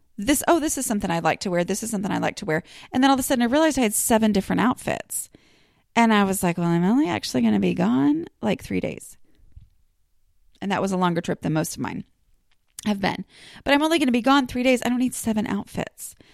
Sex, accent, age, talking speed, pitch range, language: female, American, 30-49, 255 wpm, 180-240 Hz, English